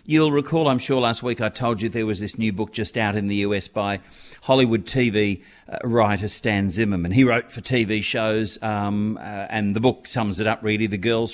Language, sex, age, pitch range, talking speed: English, male, 50-69, 105-130 Hz, 215 wpm